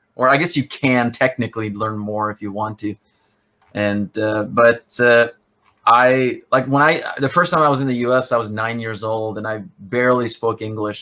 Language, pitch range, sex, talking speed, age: English, 110-120 Hz, male, 205 wpm, 20-39